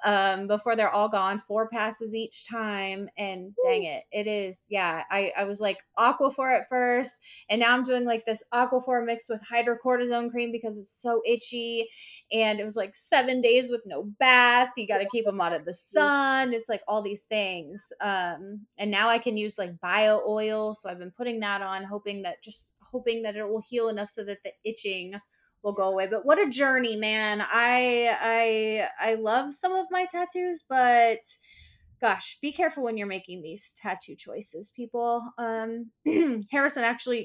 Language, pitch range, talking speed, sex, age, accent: English, 210-250 Hz, 190 wpm, female, 20-39, American